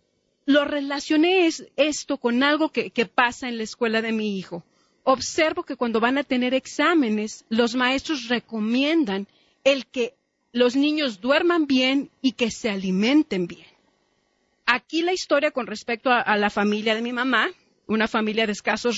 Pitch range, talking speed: 215-290 Hz, 165 wpm